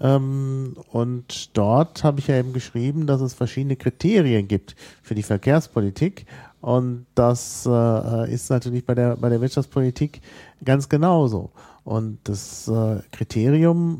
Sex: male